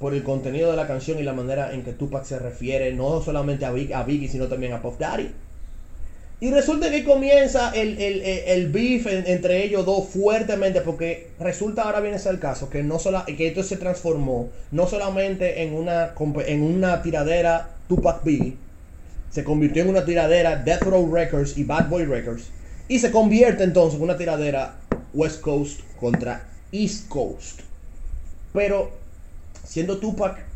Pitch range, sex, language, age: 110-180 Hz, male, Spanish, 30-49